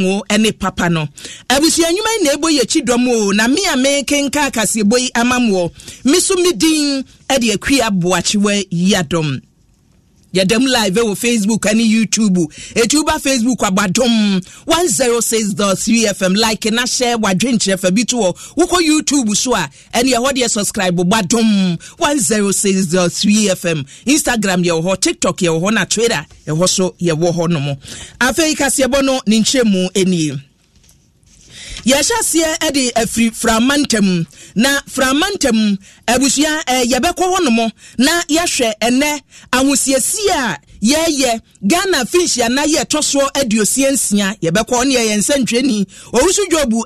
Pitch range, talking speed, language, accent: 205-285 Hz, 140 wpm, English, Nigerian